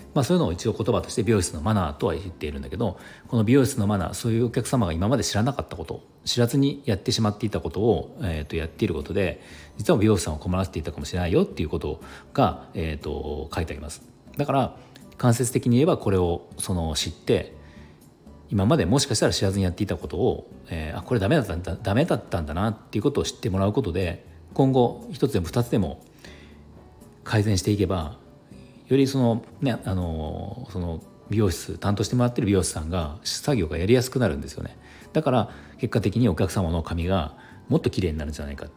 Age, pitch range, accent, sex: 40-59, 80-120 Hz, native, male